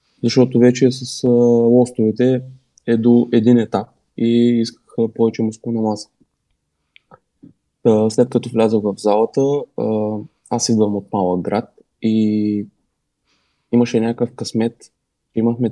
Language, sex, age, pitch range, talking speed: Bulgarian, male, 20-39, 105-125 Hz, 105 wpm